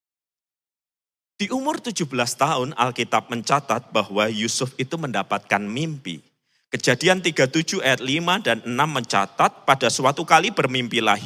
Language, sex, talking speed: Malay, male, 115 wpm